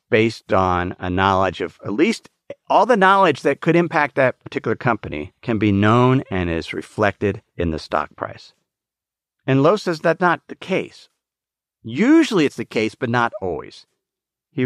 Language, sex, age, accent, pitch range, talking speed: English, male, 50-69, American, 110-155 Hz, 170 wpm